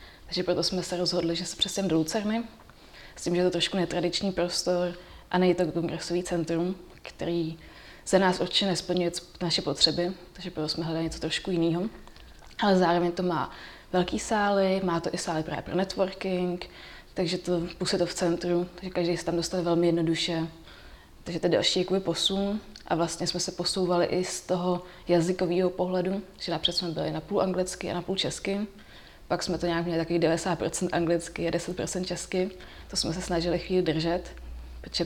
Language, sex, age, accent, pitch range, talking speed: Czech, female, 20-39, native, 165-180 Hz, 180 wpm